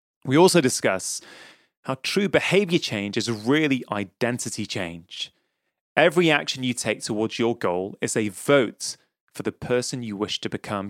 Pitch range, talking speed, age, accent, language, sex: 115-155 Hz, 155 wpm, 30-49, British, English, male